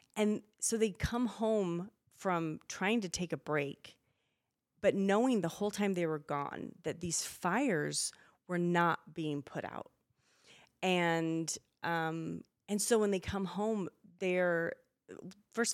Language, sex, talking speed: English, female, 140 wpm